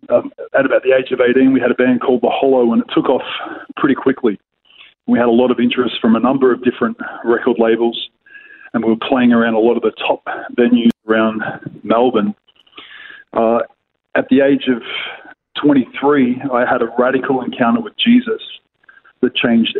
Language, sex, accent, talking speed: English, male, Australian, 185 wpm